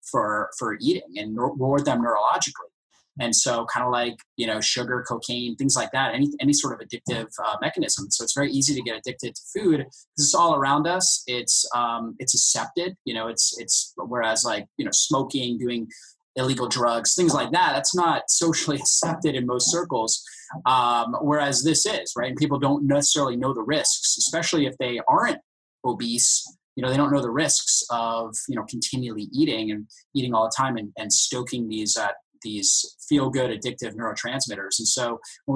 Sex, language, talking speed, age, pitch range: male, English, 190 wpm, 20-39, 120-150 Hz